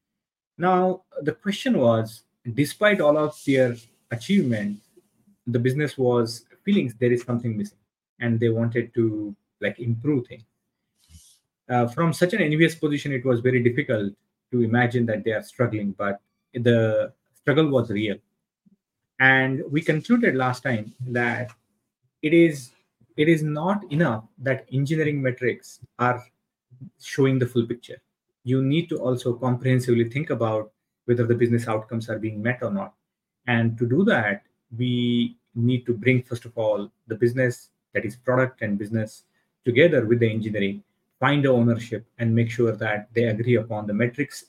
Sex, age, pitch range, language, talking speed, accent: male, 30-49, 115-145 Hz, English, 155 wpm, Indian